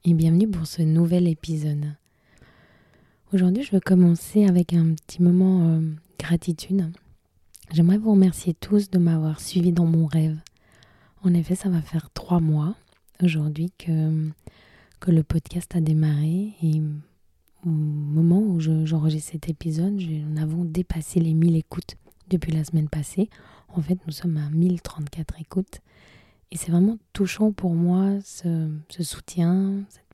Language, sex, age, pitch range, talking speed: French, female, 20-39, 155-175 Hz, 150 wpm